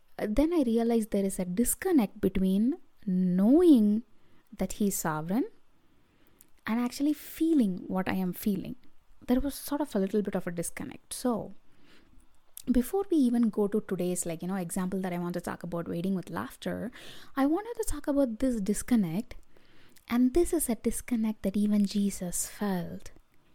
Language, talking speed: English, 165 wpm